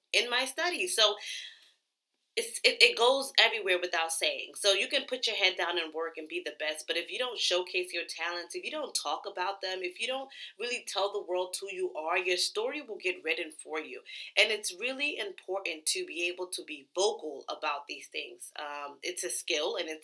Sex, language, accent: female, English, American